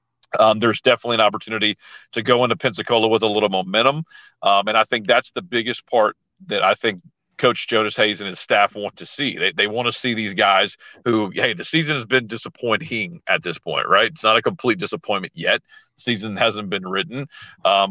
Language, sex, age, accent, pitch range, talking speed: English, male, 40-59, American, 105-120 Hz, 210 wpm